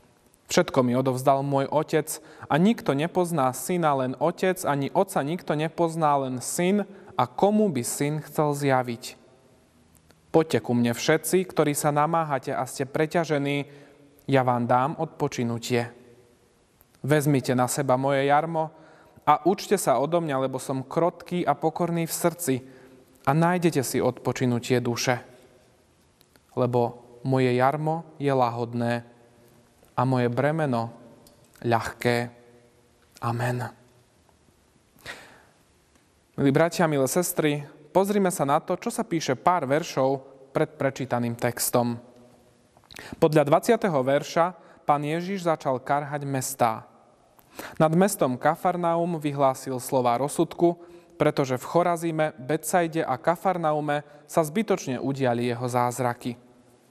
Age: 30-49